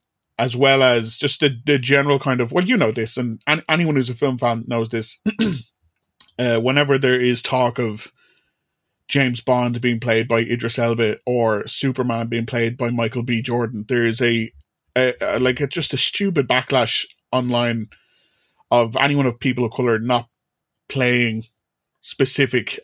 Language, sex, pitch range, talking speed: English, male, 115-135 Hz, 165 wpm